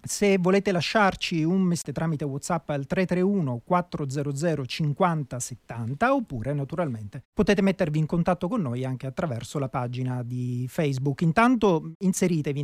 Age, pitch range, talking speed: 40-59, 140-180 Hz, 135 wpm